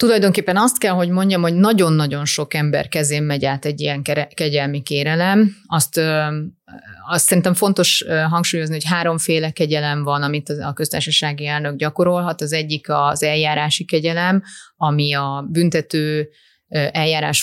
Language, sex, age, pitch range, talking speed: Hungarian, female, 30-49, 145-170 Hz, 135 wpm